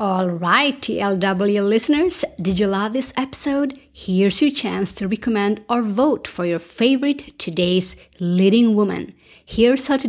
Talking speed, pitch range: 150 wpm, 190-255 Hz